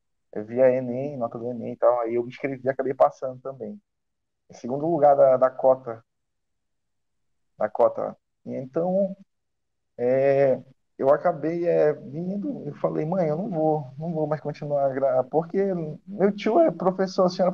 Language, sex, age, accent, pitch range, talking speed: Portuguese, male, 20-39, Brazilian, 130-165 Hz, 155 wpm